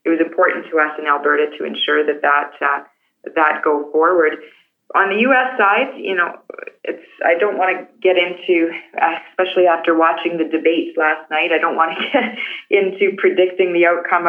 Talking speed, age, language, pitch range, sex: 190 wpm, 20-39, English, 155-205 Hz, female